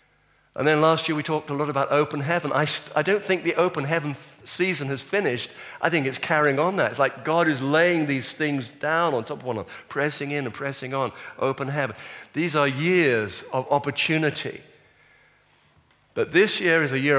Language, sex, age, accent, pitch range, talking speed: English, male, 50-69, British, 115-155 Hz, 205 wpm